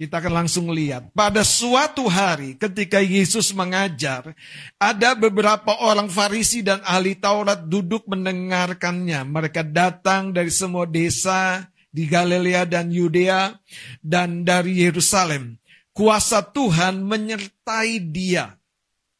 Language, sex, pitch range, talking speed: Indonesian, male, 175-220 Hz, 110 wpm